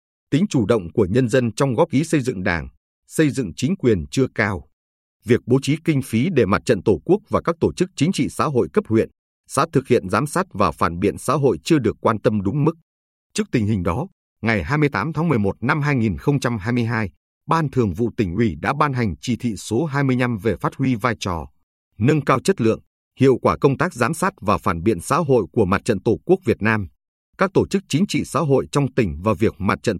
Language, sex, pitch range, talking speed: Vietnamese, male, 95-145 Hz, 230 wpm